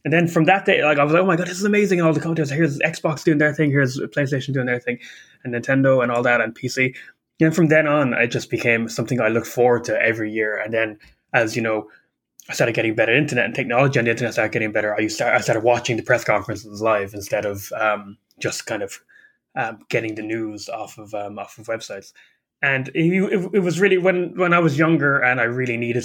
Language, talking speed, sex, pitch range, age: English, 240 wpm, male, 115-155 Hz, 20-39